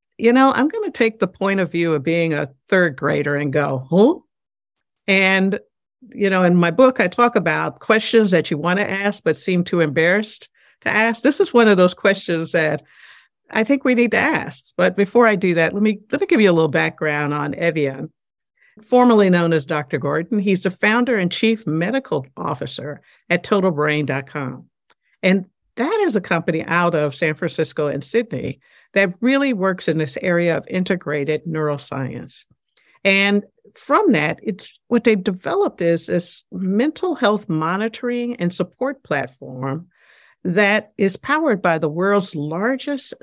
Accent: American